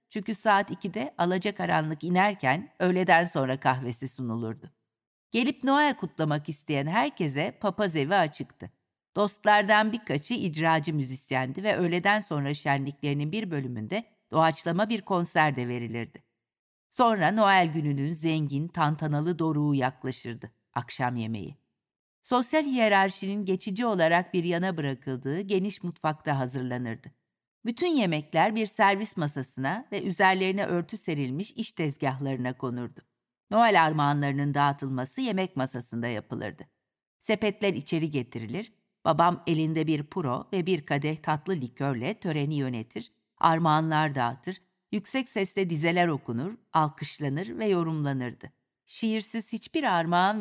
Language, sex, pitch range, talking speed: Turkish, female, 135-200 Hz, 115 wpm